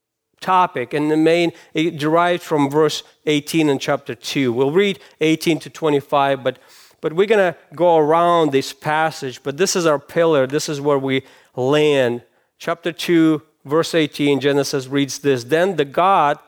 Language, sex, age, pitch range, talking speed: English, male, 40-59, 135-165 Hz, 170 wpm